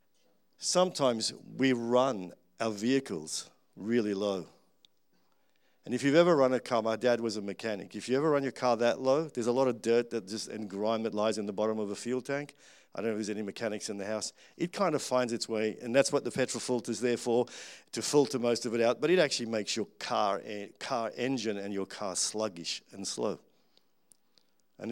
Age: 50-69